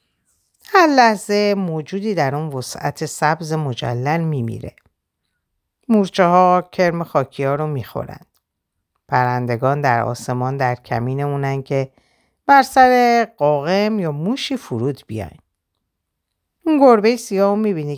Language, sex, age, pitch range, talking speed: Persian, female, 50-69, 130-200 Hz, 115 wpm